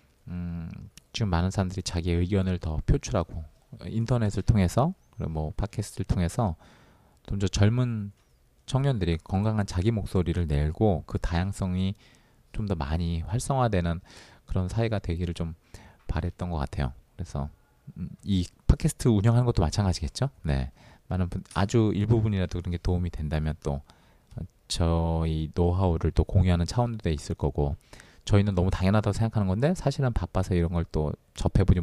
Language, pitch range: Korean, 80-105 Hz